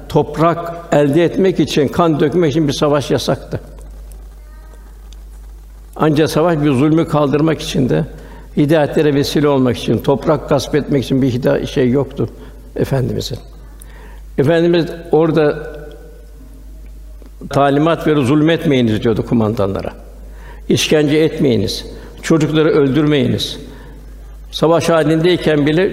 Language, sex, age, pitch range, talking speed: Turkish, male, 60-79, 125-160 Hz, 100 wpm